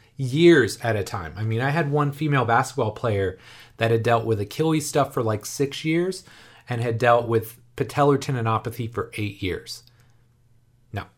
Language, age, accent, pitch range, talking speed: English, 30-49, American, 115-135 Hz, 170 wpm